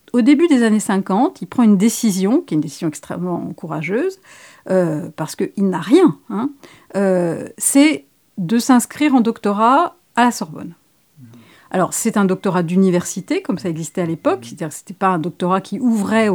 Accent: French